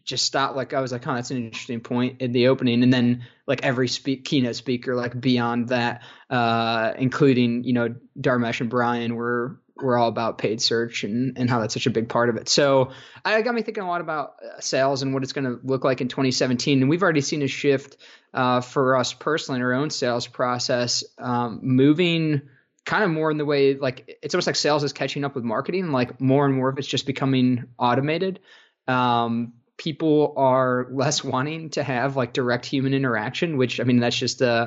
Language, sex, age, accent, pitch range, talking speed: English, male, 20-39, American, 125-140 Hz, 215 wpm